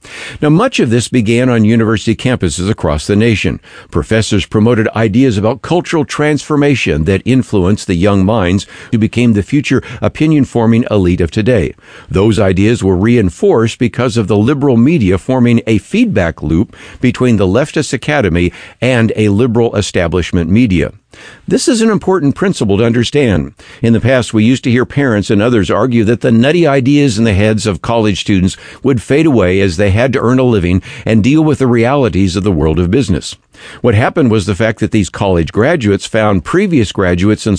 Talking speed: 180 wpm